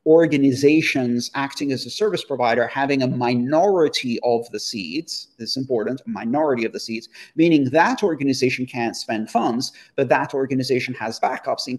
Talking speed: 165 wpm